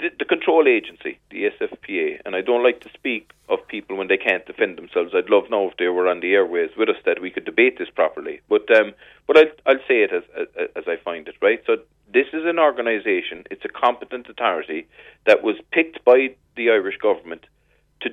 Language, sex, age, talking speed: English, male, 40-59, 220 wpm